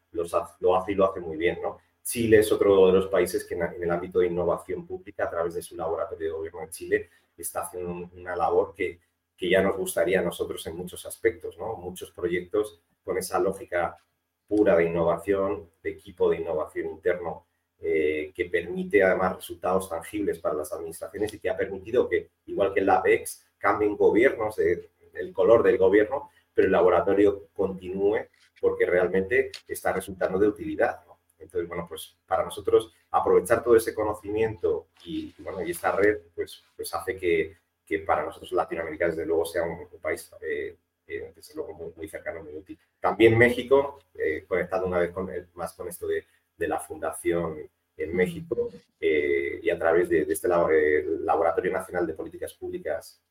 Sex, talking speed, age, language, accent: male, 180 wpm, 30-49, Spanish, Spanish